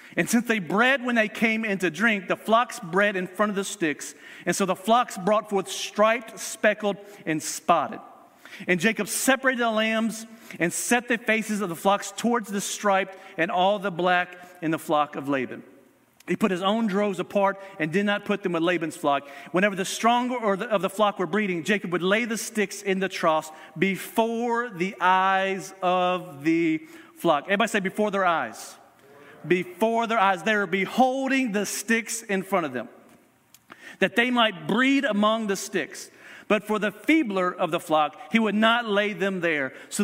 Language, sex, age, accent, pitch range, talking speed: English, male, 40-59, American, 180-225 Hz, 190 wpm